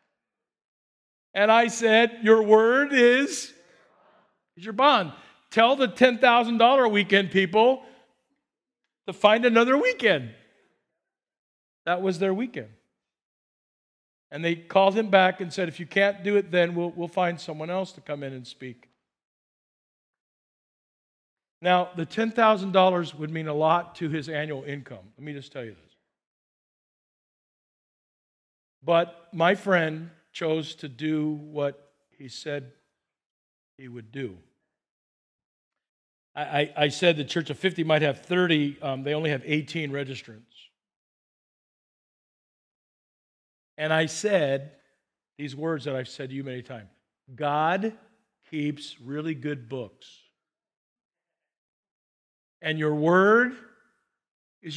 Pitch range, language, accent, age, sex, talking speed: 140-195 Hz, English, American, 50-69, male, 125 wpm